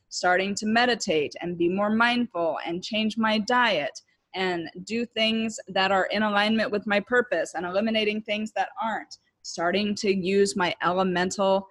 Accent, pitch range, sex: American, 180-220 Hz, female